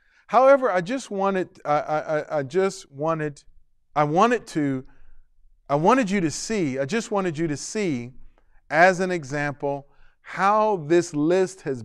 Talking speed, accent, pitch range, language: 150 wpm, American, 130-175 Hz, English